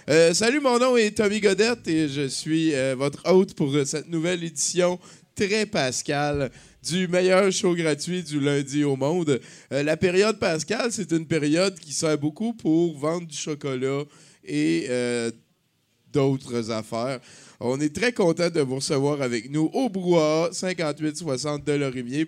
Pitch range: 130-180 Hz